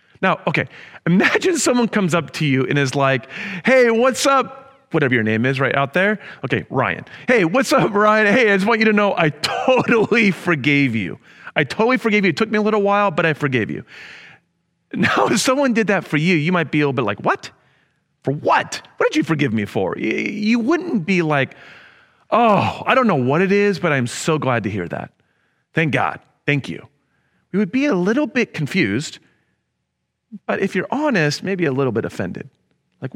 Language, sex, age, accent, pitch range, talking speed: English, male, 40-59, American, 125-205 Hz, 205 wpm